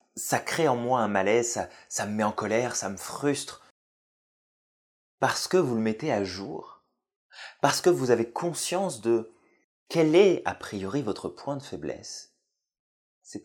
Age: 30-49